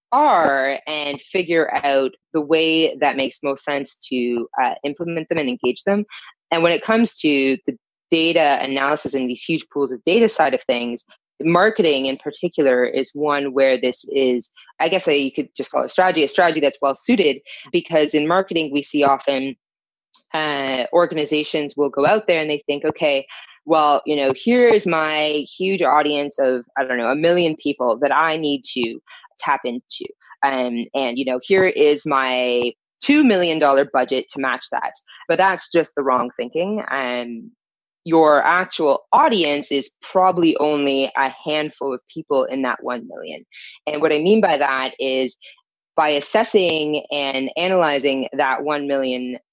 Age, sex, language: 20-39, female, English